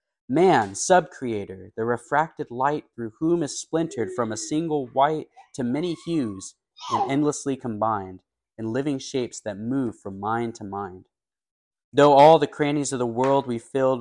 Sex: male